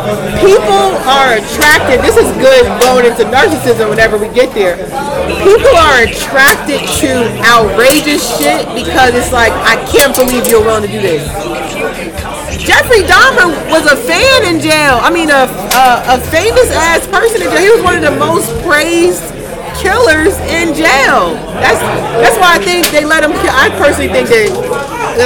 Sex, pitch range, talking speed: female, 240-360 Hz, 165 wpm